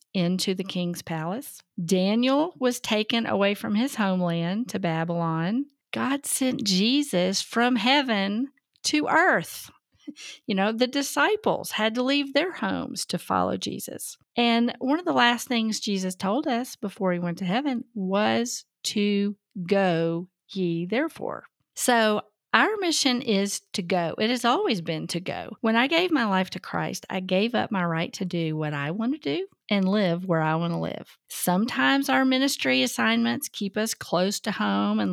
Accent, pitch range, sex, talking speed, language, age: American, 175-245 Hz, female, 170 wpm, English, 40-59